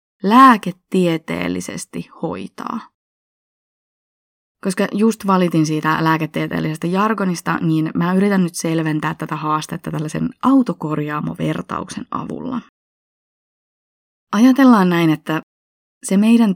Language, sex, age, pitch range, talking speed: Finnish, female, 20-39, 155-200 Hz, 85 wpm